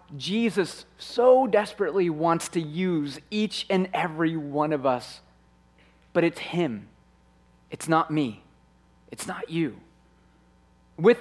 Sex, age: male, 30-49